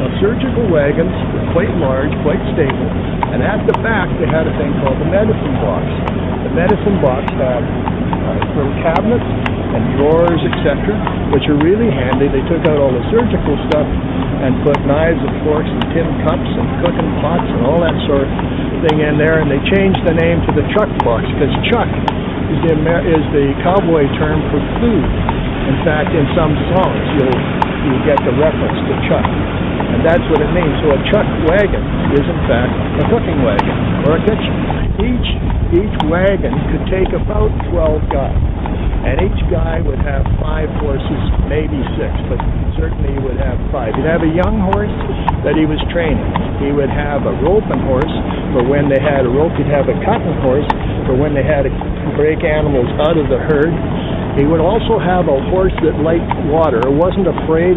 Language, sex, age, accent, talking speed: English, male, 60-79, American, 185 wpm